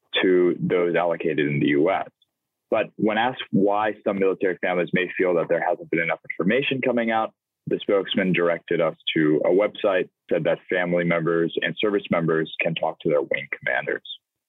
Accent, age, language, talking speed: American, 20-39, English, 180 wpm